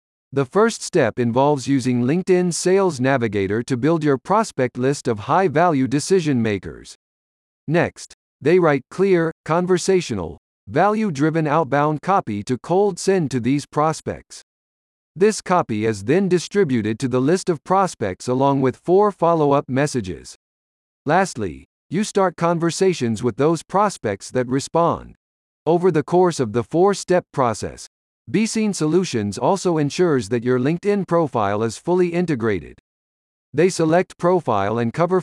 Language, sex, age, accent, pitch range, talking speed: English, male, 50-69, American, 120-180 Hz, 130 wpm